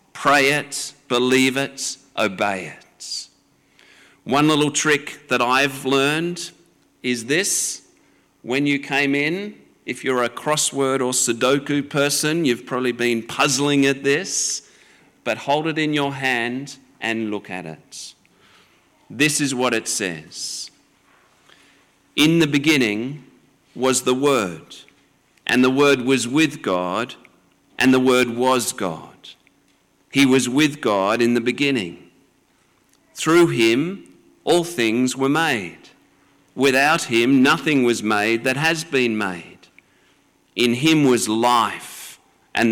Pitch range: 115-140 Hz